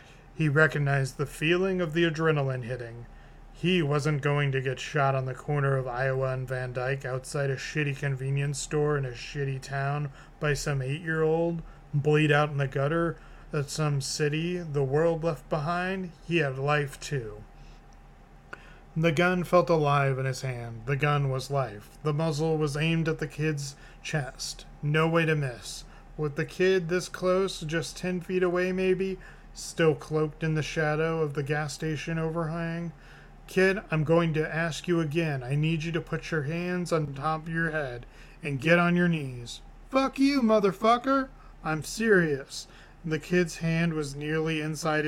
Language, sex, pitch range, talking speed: English, male, 140-170 Hz, 170 wpm